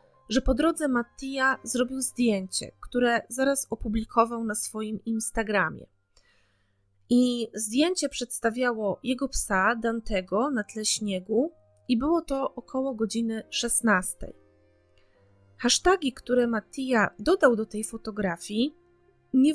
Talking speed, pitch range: 105 wpm, 215-265 Hz